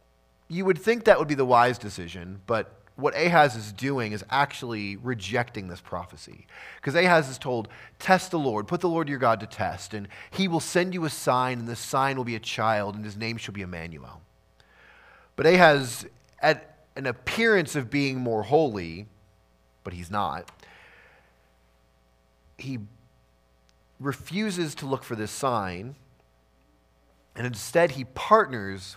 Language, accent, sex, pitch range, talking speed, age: English, American, male, 90-140 Hz, 155 wpm, 30-49